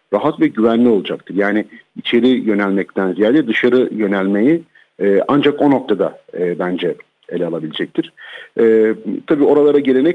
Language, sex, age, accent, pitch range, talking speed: Turkish, male, 50-69, native, 100-135 Hz, 130 wpm